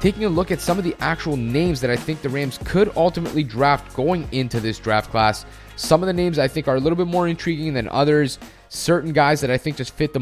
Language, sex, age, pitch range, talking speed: English, male, 20-39, 125-160 Hz, 260 wpm